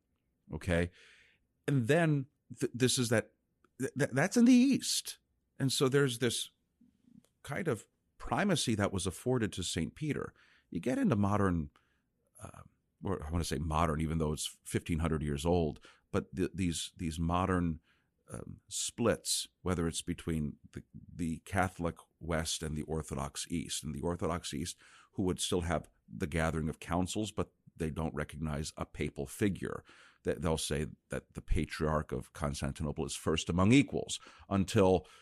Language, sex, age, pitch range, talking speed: English, male, 40-59, 80-100 Hz, 150 wpm